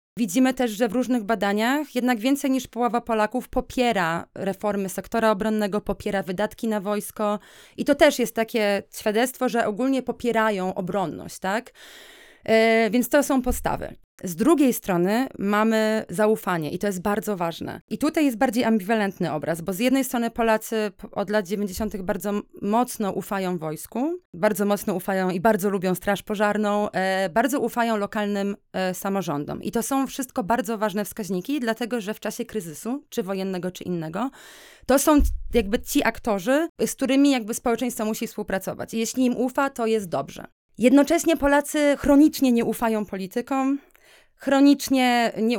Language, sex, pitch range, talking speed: Polish, female, 200-245 Hz, 155 wpm